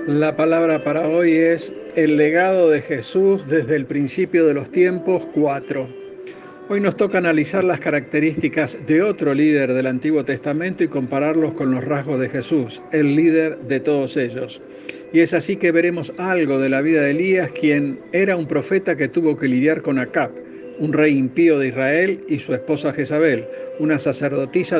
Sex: male